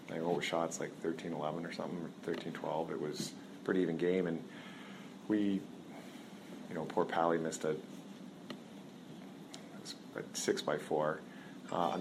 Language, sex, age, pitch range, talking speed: English, male, 30-49, 85-95 Hz, 135 wpm